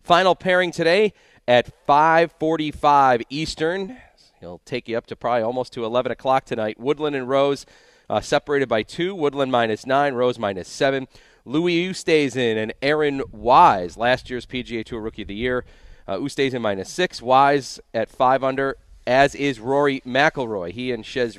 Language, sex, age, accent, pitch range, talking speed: English, male, 40-59, American, 110-140 Hz, 165 wpm